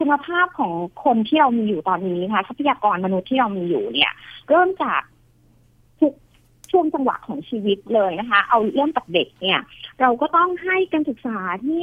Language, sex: Thai, female